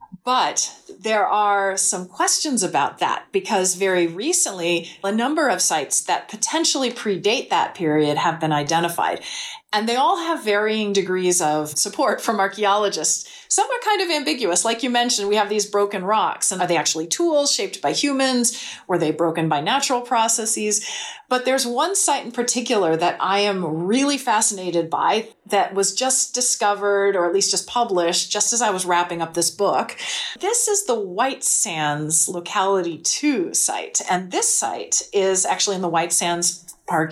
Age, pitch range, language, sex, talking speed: 40-59, 180-255 Hz, English, female, 170 wpm